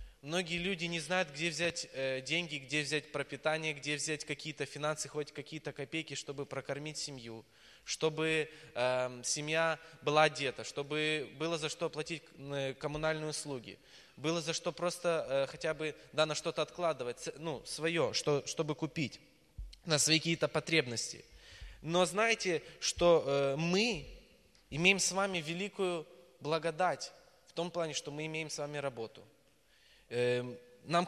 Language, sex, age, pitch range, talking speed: Russian, male, 20-39, 145-175 Hz, 140 wpm